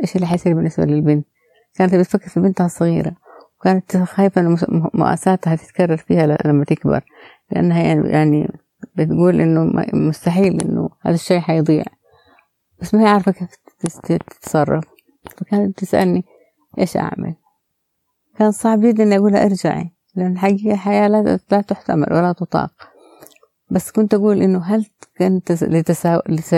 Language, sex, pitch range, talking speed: Arabic, female, 160-195 Hz, 120 wpm